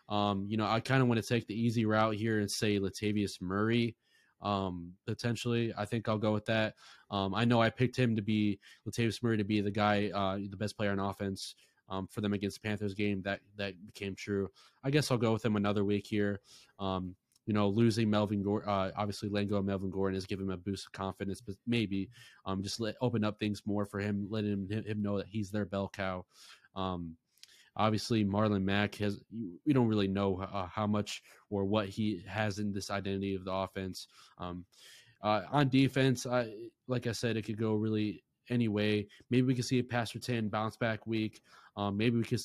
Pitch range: 100-115 Hz